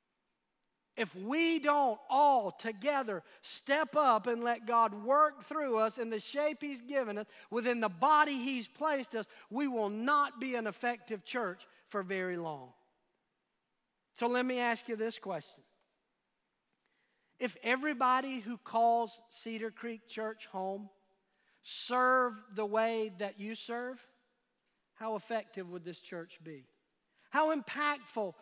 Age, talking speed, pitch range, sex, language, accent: 40-59, 135 wpm, 215-275 Hz, male, English, American